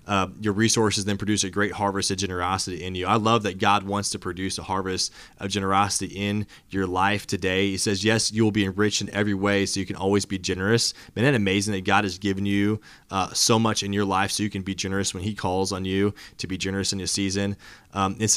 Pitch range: 95-115 Hz